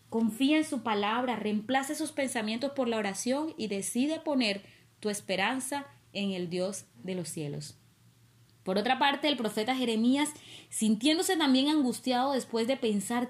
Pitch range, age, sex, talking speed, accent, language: 185-250 Hz, 30-49, female, 150 wpm, American, Spanish